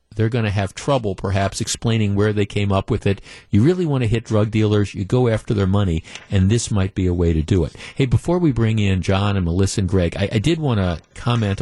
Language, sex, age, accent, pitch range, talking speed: English, male, 50-69, American, 95-115 Hz, 260 wpm